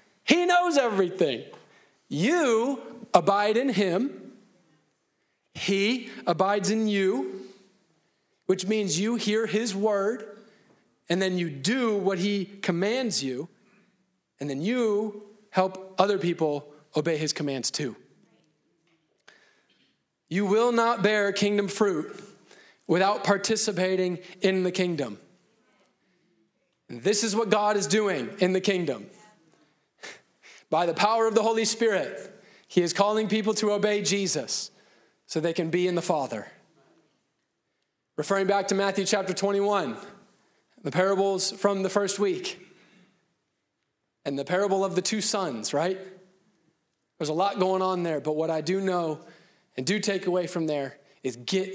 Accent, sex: American, male